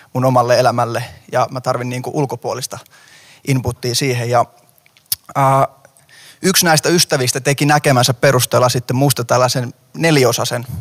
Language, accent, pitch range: Finnish, native, 120-140 Hz